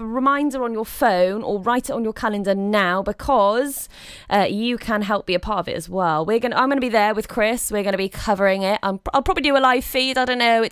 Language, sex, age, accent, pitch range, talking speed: English, female, 20-39, British, 190-250 Hz, 270 wpm